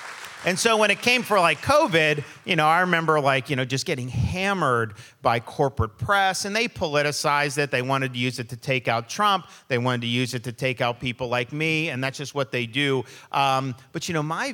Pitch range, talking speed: 135-175 Hz, 230 wpm